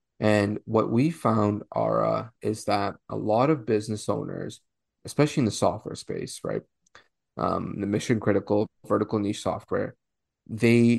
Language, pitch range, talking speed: English, 105-115 Hz, 140 wpm